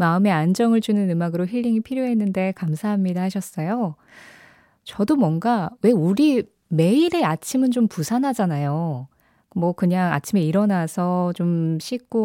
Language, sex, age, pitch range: Korean, female, 20-39, 170-230 Hz